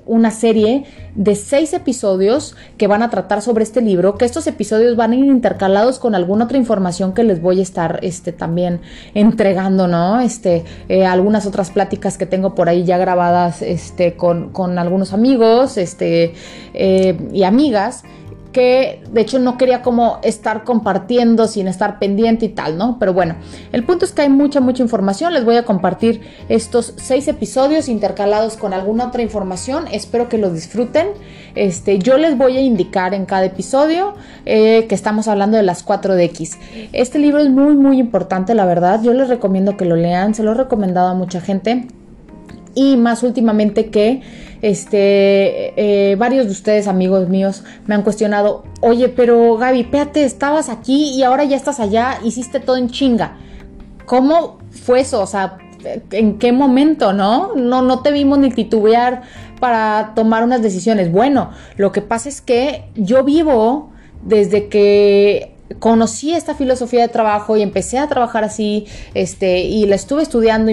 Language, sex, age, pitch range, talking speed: Spanish, female, 30-49, 195-250 Hz, 170 wpm